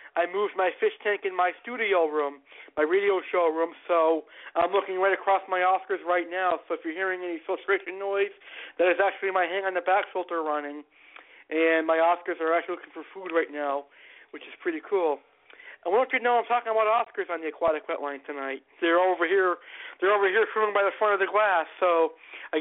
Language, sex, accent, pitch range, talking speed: English, male, American, 170-220 Hz, 220 wpm